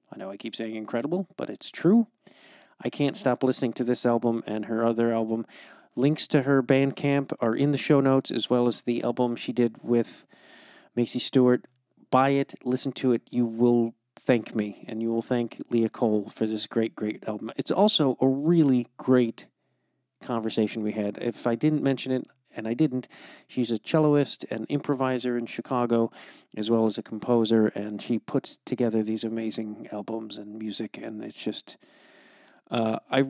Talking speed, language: 185 wpm, English